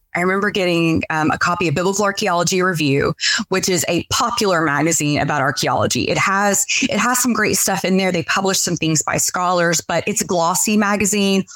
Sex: female